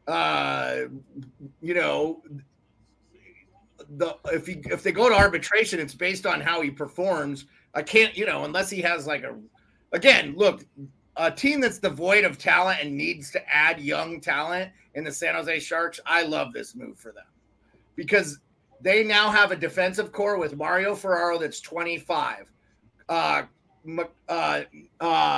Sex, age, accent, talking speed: male, 30-49, American, 150 wpm